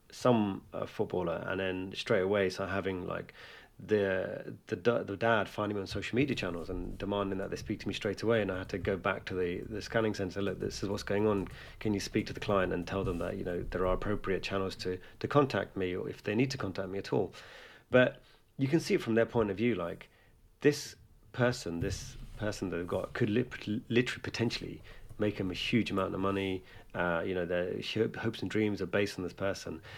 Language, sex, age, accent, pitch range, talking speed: English, male, 30-49, British, 95-115 Hz, 235 wpm